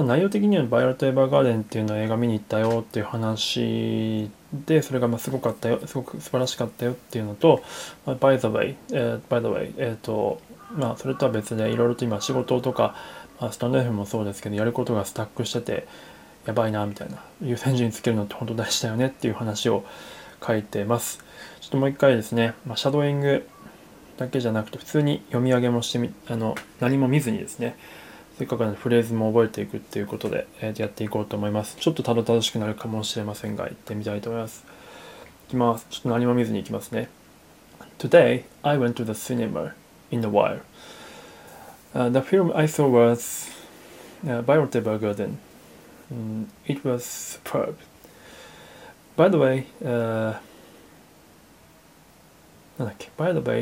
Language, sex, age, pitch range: Japanese, male, 20-39, 110-130 Hz